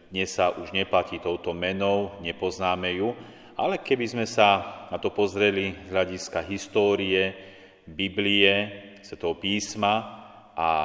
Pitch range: 95-105 Hz